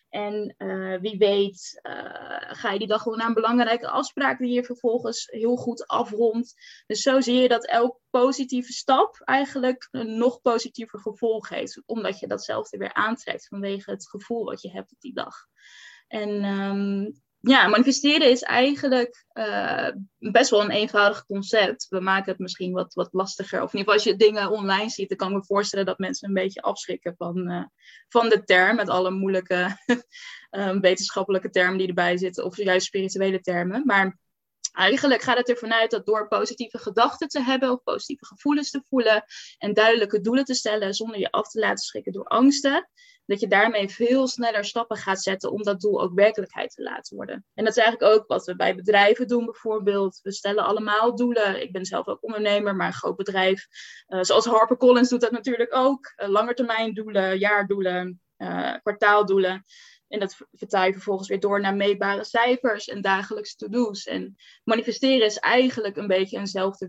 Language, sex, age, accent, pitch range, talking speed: Dutch, female, 10-29, Dutch, 195-240 Hz, 185 wpm